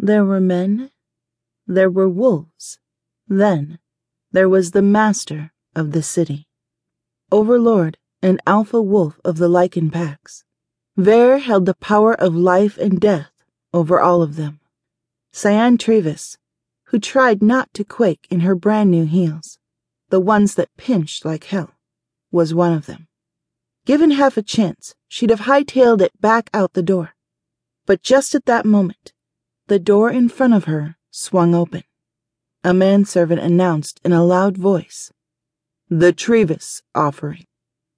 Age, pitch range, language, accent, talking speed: 30-49, 165-210 Hz, English, American, 145 wpm